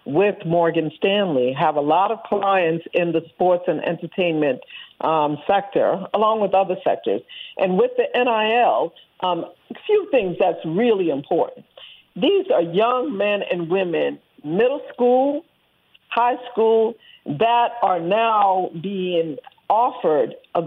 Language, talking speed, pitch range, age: English, 135 wpm, 175-245 Hz, 60-79